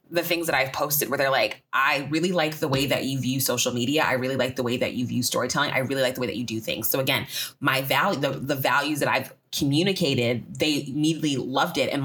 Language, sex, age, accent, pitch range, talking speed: English, female, 20-39, American, 140-180 Hz, 255 wpm